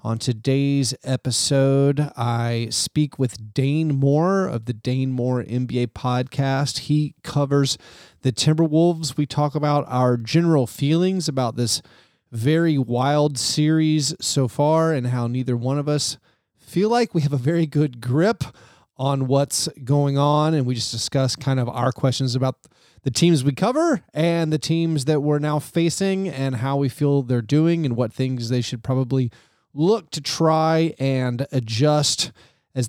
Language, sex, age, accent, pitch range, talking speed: English, male, 30-49, American, 130-160 Hz, 160 wpm